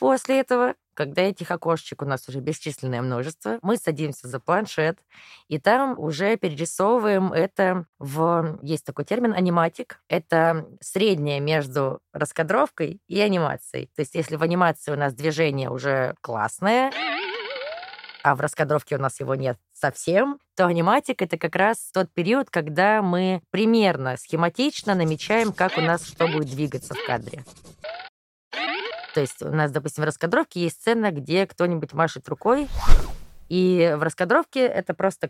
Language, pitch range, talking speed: Russian, 150-205 Hz, 145 wpm